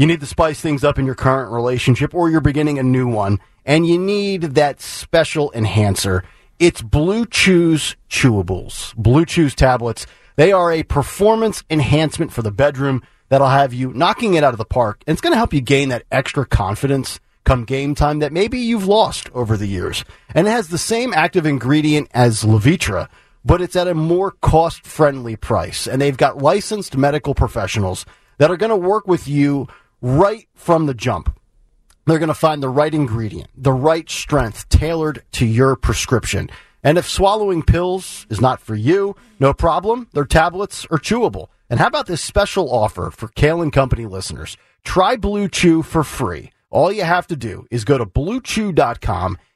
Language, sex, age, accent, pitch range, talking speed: English, male, 40-59, American, 115-170 Hz, 185 wpm